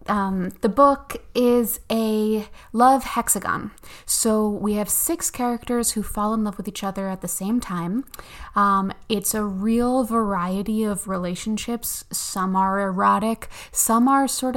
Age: 20-39